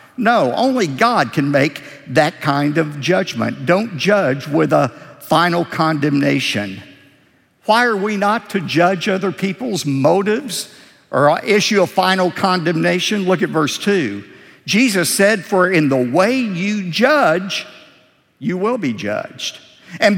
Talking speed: 135 wpm